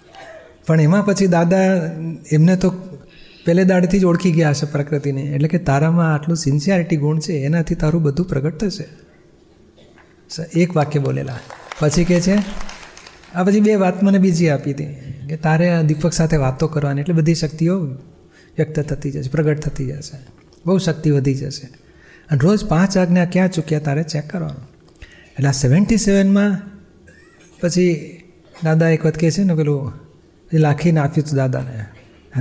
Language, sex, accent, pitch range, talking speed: Gujarati, male, native, 150-180 Hz, 155 wpm